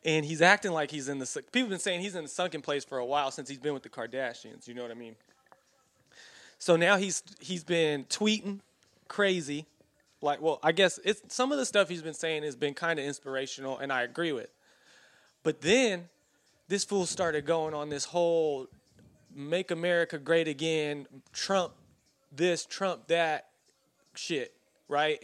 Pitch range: 150-195 Hz